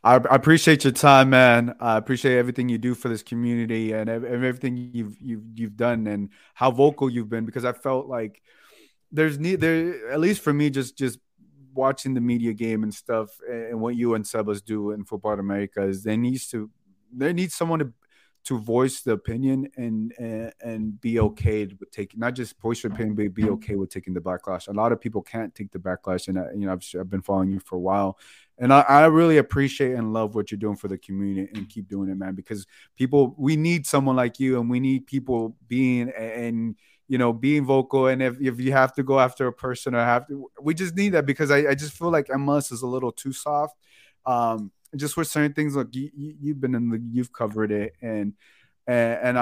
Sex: male